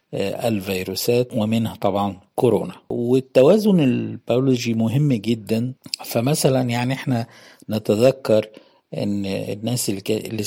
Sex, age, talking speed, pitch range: male, 50-69, 85 wpm, 105-125 Hz